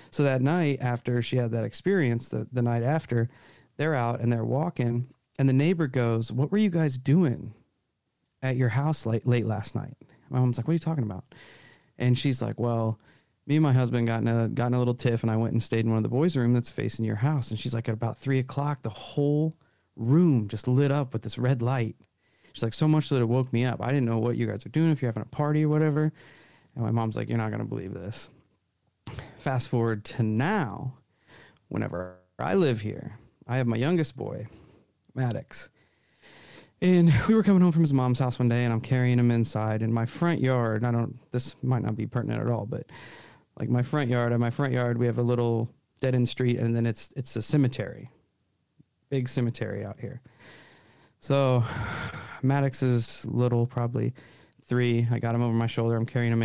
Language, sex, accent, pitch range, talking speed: English, male, American, 115-135 Hz, 220 wpm